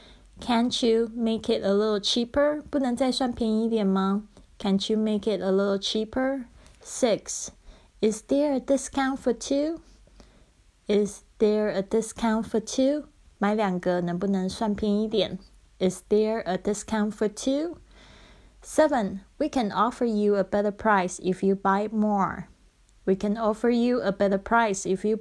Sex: female